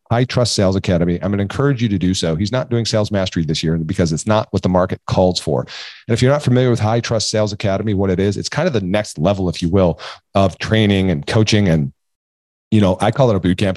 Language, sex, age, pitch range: English, male, 40-59, 95-120 Hz